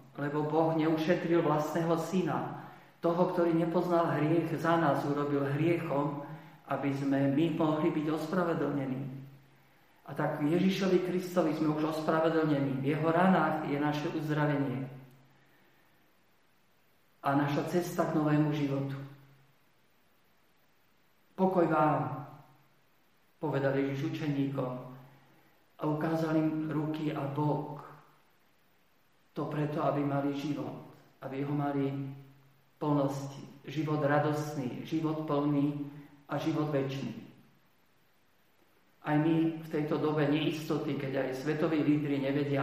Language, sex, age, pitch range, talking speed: Slovak, male, 50-69, 140-160 Hz, 105 wpm